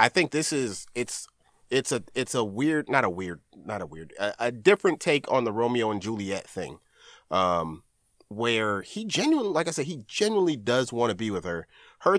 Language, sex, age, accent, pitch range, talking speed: English, male, 30-49, American, 105-145 Hz, 205 wpm